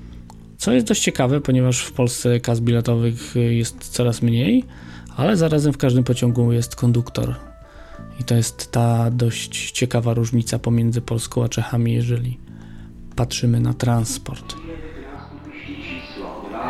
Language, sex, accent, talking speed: Polish, male, native, 120 wpm